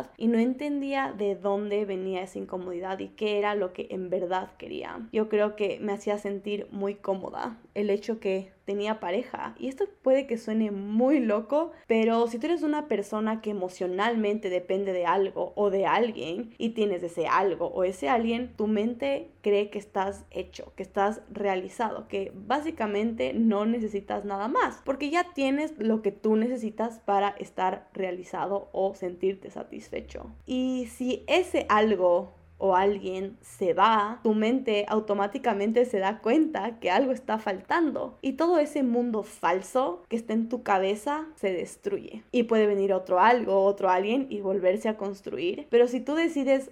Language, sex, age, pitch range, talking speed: Spanish, female, 10-29, 195-240 Hz, 165 wpm